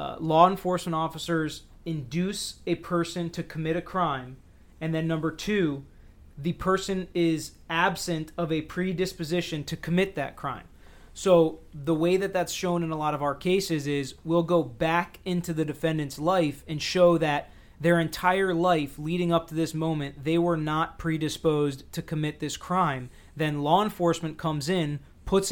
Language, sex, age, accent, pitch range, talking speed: English, male, 30-49, American, 150-175 Hz, 165 wpm